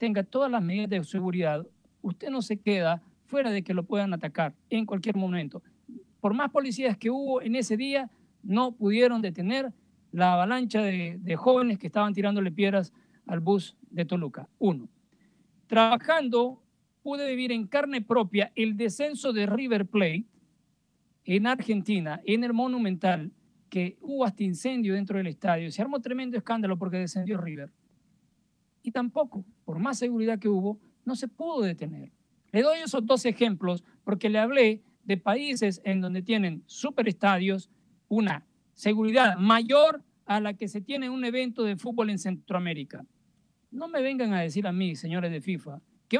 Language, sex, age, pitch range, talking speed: Spanish, male, 50-69, 195-250 Hz, 160 wpm